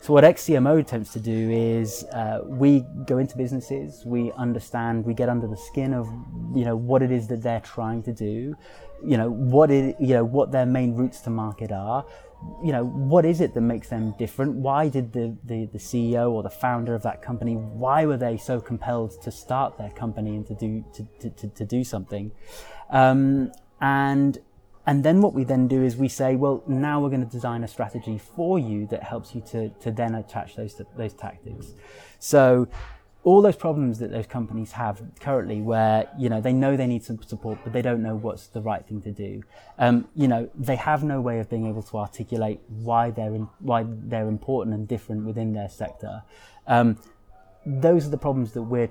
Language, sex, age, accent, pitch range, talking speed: English, male, 20-39, British, 110-130 Hz, 210 wpm